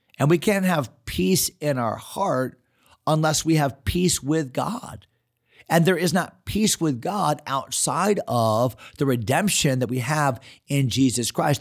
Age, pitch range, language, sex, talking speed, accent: 40-59, 115-150 Hz, English, male, 160 wpm, American